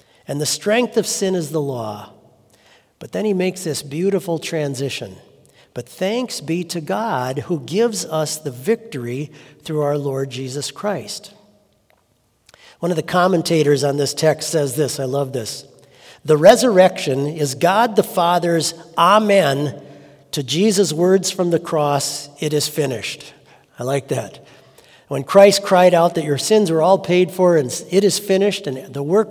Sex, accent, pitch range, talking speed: male, American, 140-180 Hz, 160 wpm